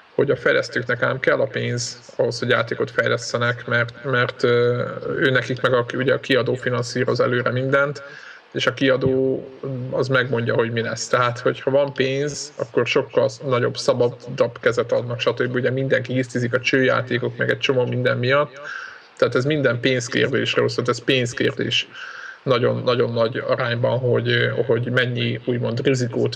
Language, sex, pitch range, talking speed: Hungarian, male, 120-140 Hz, 155 wpm